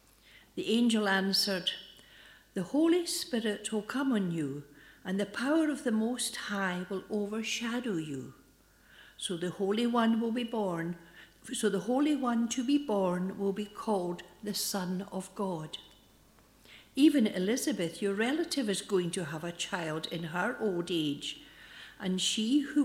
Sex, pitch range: female, 180-225 Hz